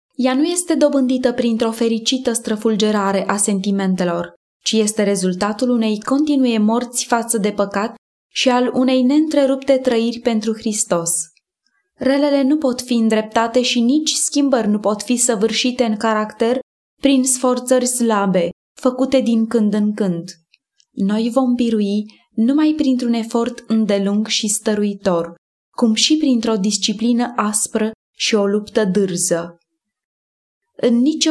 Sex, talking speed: female, 130 wpm